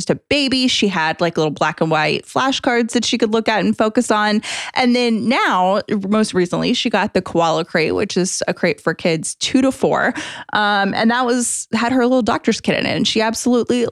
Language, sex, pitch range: English, female, 180-255 Hz